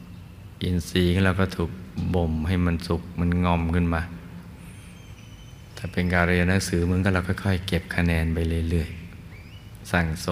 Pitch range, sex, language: 85-100 Hz, male, Thai